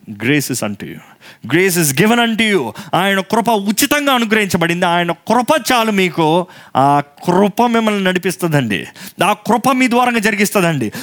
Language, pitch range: Telugu, 165-230 Hz